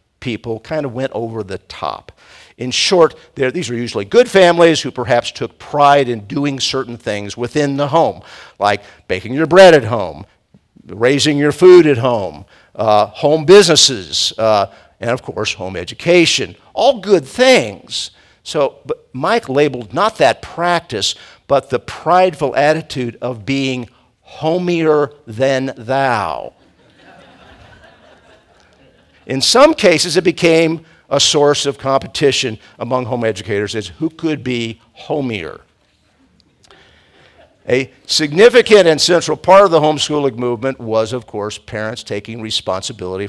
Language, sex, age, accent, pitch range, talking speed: English, male, 50-69, American, 115-155 Hz, 130 wpm